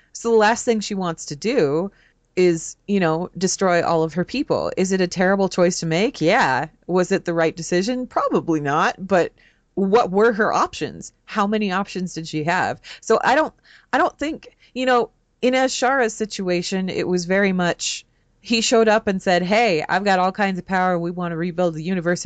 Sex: female